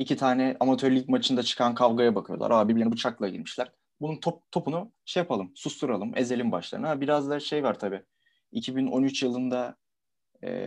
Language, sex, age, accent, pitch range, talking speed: Turkish, male, 30-49, native, 115-140 Hz, 150 wpm